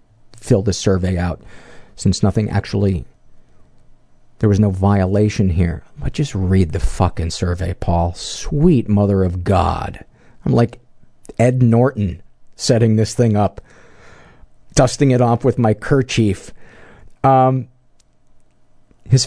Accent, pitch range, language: American, 100-125 Hz, English